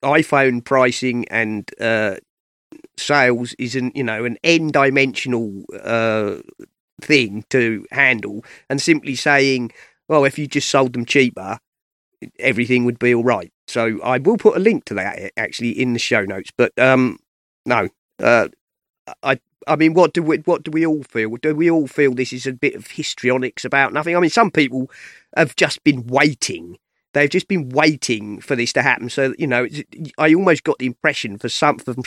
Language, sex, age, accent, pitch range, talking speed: English, male, 30-49, British, 125-185 Hz, 185 wpm